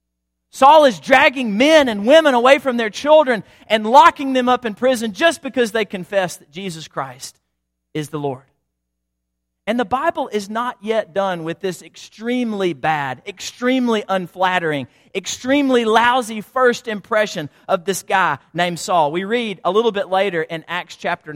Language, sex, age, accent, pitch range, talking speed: English, male, 40-59, American, 165-240 Hz, 160 wpm